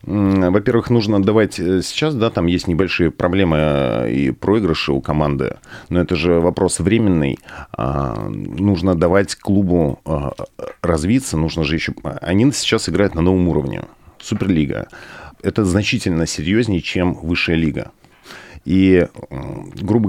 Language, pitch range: Russian, 80-100 Hz